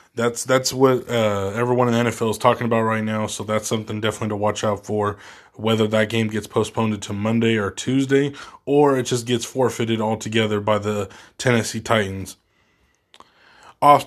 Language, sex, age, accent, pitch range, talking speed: English, male, 20-39, American, 105-125 Hz, 175 wpm